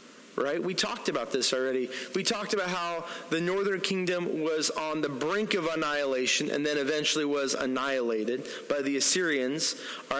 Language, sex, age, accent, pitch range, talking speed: English, male, 30-49, American, 165-230 Hz, 165 wpm